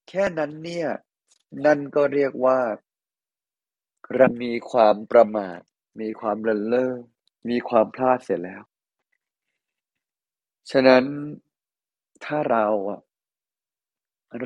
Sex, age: male, 20-39